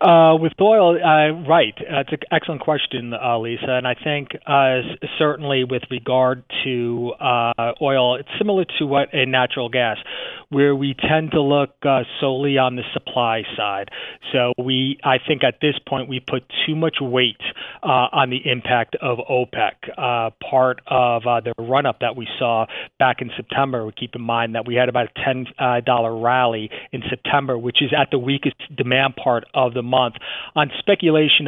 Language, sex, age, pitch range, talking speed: English, male, 30-49, 125-140 Hz, 180 wpm